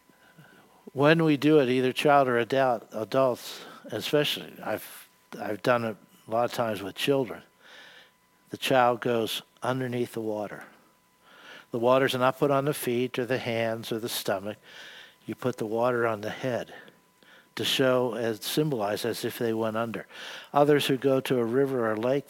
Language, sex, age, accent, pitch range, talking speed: English, male, 60-79, American, 115-145 Hz, 175 wpm